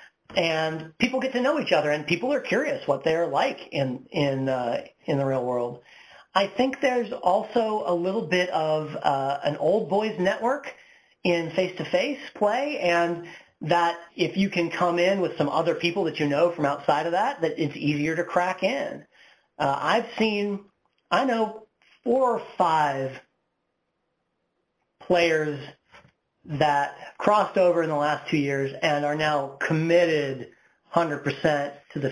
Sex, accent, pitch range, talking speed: male, American, 150-195 Hz, 160 wpm